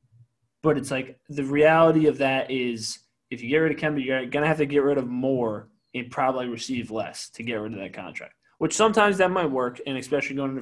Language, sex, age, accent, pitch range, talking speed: English, male, 20-39, American, 120-145 Hz, 235 wpm